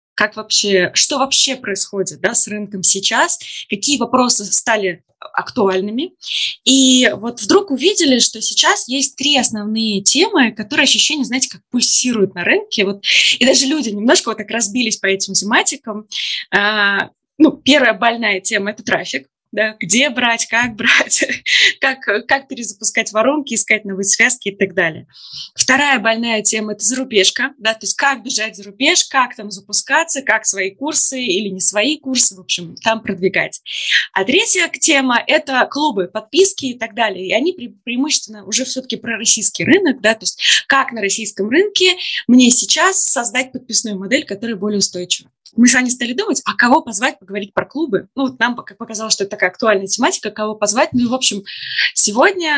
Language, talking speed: Russian, 170 wpm